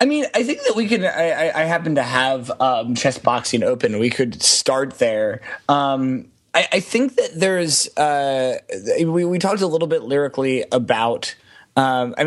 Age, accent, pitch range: 30-49, American, 130-165 Hz